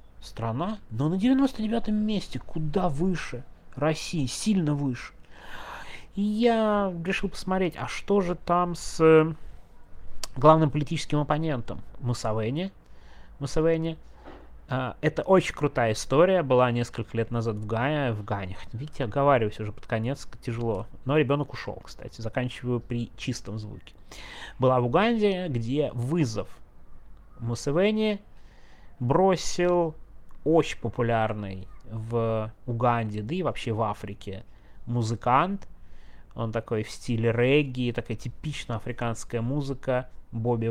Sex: male